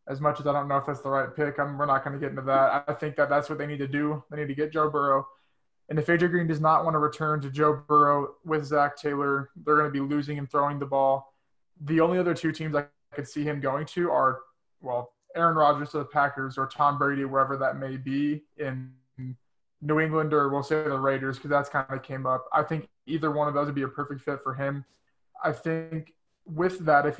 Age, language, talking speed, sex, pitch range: 20-39, English, 250 wpm, male, 135-150 Hz